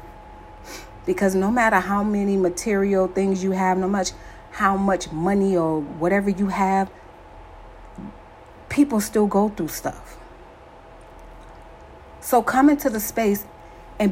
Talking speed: 125 wpm